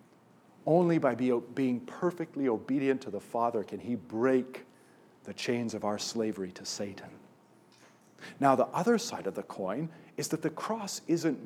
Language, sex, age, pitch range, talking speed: English, male, 50-69, 115-155 Hz, 155 wpm